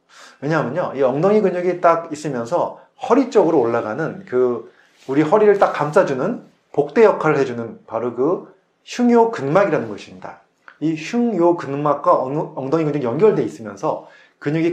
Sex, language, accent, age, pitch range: male, Korean, native, 30-49, 130-200 Hz